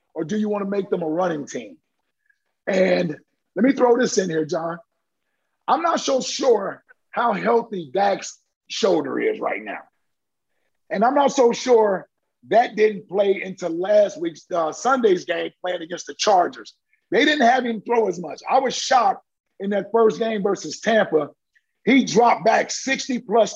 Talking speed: 170 wpm